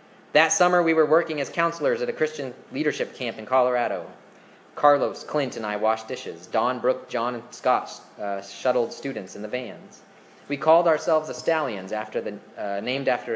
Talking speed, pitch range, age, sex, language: 175 wpm, 115-160 Hz, 20-39, male, English